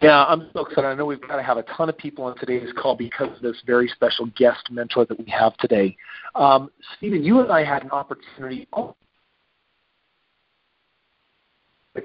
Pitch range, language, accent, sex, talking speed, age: 130-175 Hz, English, American, male, 185 wpm, 40-59